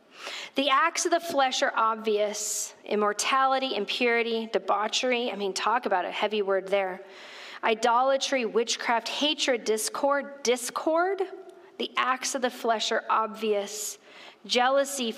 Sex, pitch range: female, 225-275 Hz